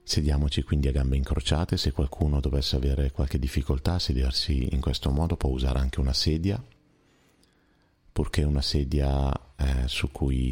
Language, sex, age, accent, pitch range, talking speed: Italian, male, 30-49, native, 65-85 Hz, 155 wpm